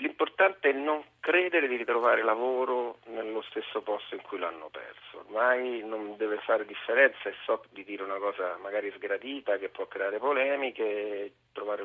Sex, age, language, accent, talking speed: male, 40-59, Italian, native, 160 wpm